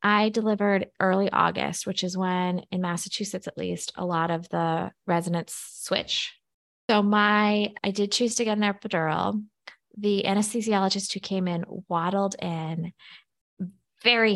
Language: English